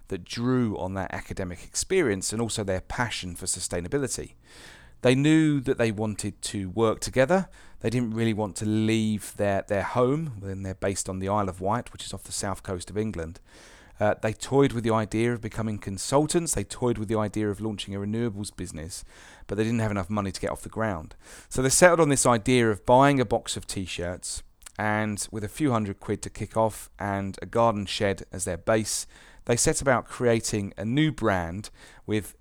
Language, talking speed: English, 205 wpm